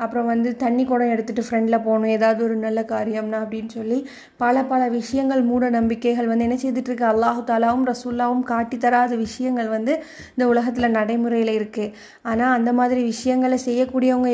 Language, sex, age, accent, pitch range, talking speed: Tamil, female, 20-39, native, 230-255 Hz, 150 wpm